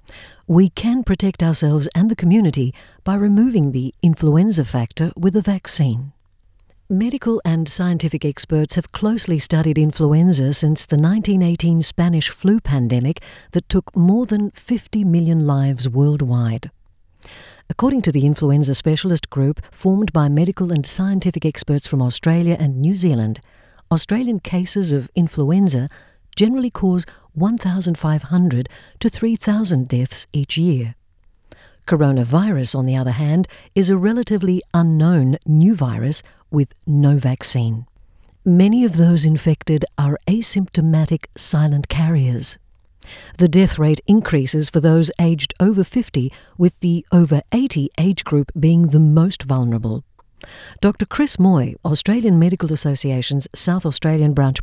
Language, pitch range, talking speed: English, 140-185 Hz, 125 wpm